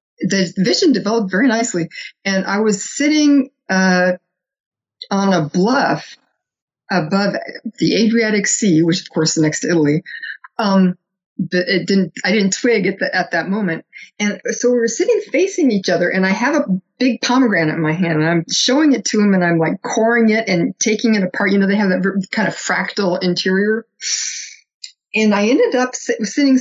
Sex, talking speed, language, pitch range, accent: female, 180 wpm, English, 180-230 Hz, American